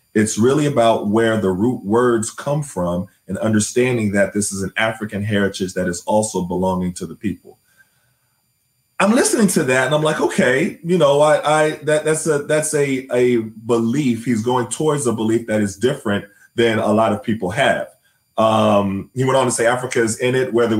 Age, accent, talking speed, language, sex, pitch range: 30-49, American, 195 wpm, English, male, 100-125 Hz